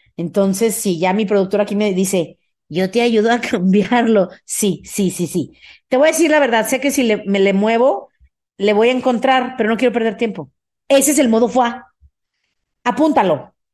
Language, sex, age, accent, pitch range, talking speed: Spanish, female, 40-59, Mexican, 220-295 Hz, 195 wpm